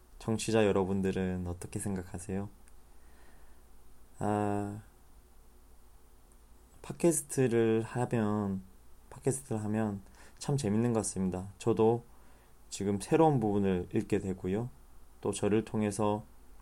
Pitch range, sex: 75-110 Hz, male